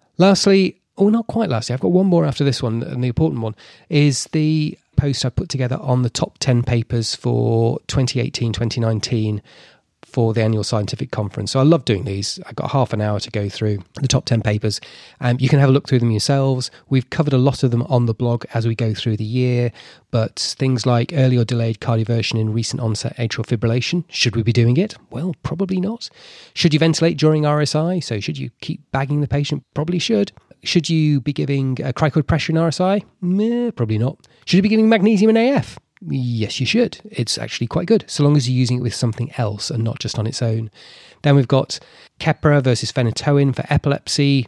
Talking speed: 215 wpm